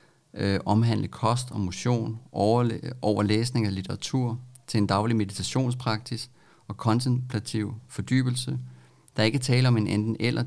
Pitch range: 100-125 Hz